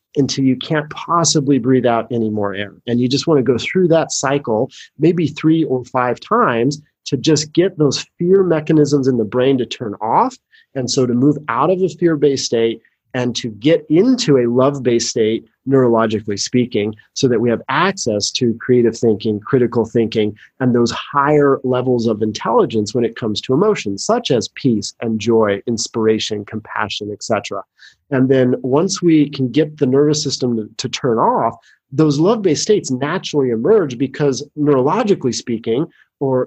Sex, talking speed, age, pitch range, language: male, 170 wpm, 30-49, 120-160 Hz, English